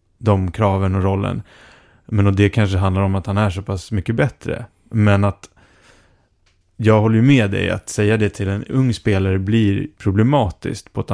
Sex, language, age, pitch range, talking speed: male, English, 30-49, 95-115 Hz, 190 wpm